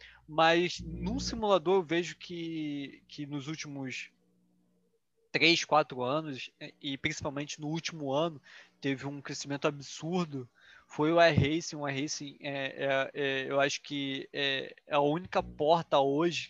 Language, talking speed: Portuguese, 140 wpm